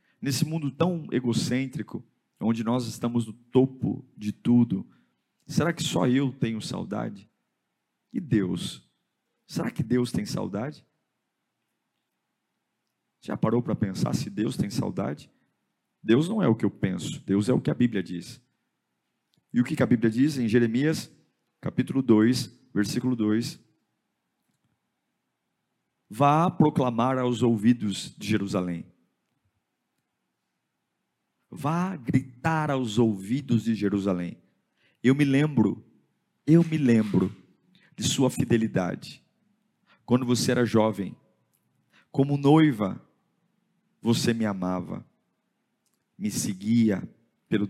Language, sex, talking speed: Portuguese, male, 115 wpm